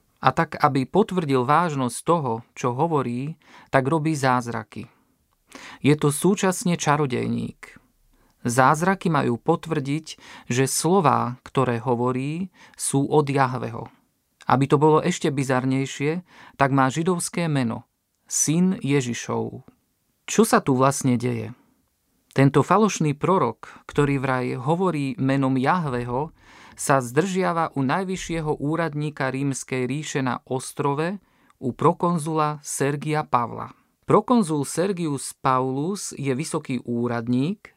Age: 40-59